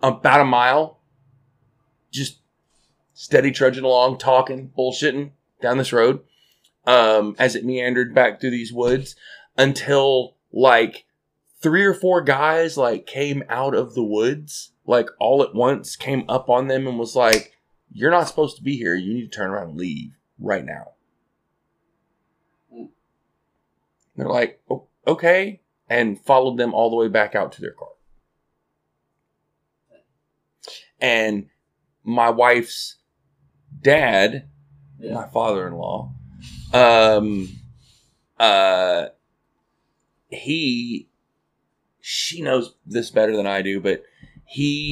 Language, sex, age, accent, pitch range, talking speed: English, male, 30-49, American, 105-140 Hz, 125 wpm